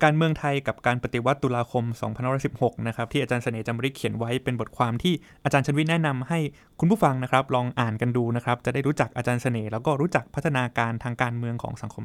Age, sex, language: 20-39, male, Thai